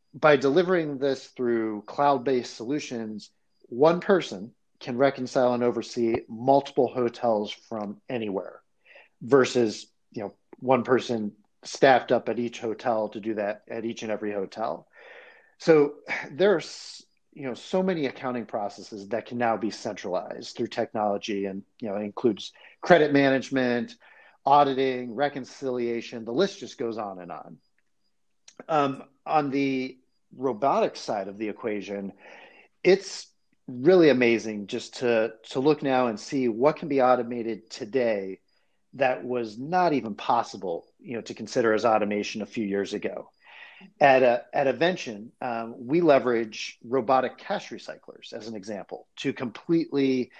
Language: English